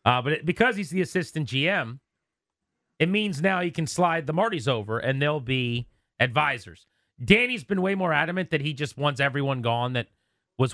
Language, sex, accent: English, male, American